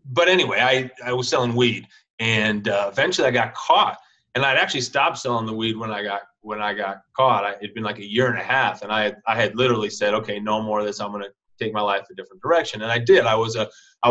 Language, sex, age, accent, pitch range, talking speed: English, male, 30-49, American, 105-125 Hz, 270 wpm